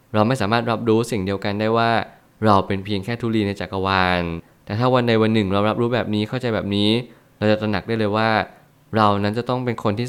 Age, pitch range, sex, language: 20-39, 100-120 Hz, male, Thai